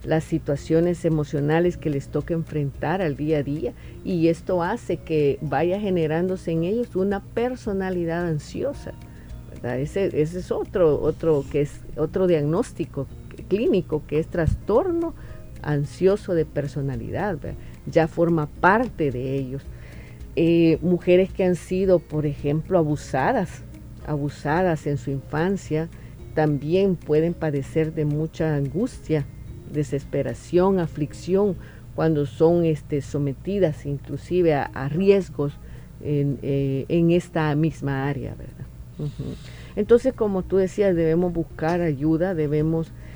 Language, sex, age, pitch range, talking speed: Spanish, female, 50-69, 145-175 Hz, 120 wpm